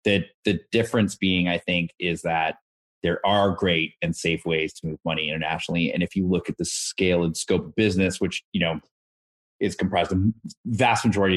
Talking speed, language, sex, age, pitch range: 200 wpm, English, male, 30-49, 85-110 Hz